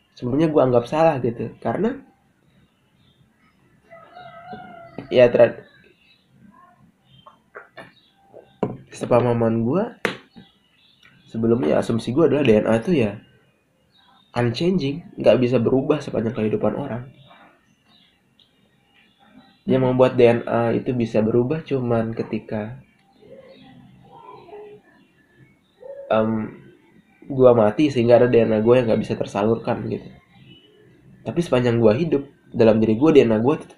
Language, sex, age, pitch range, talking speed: Indonesian, male, 20-39, 110-145 Hz, 95 wpm